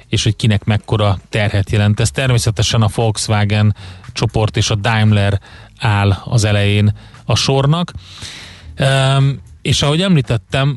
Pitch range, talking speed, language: 105-125 Hz, 125 wpm, Hungarian